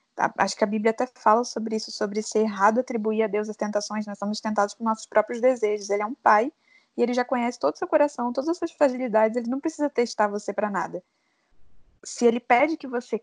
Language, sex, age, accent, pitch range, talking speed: Portuguese, female, 10-29, Brazilian, 215-260 Hz, 230 wpm